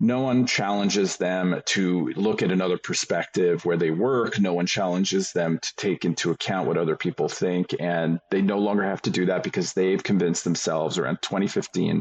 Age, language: 40-59, English